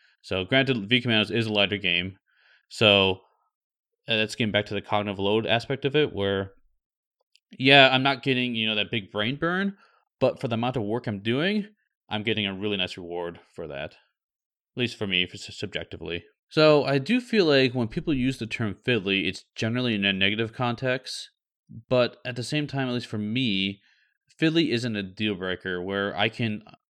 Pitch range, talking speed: 95-120 Hz, 190 wpm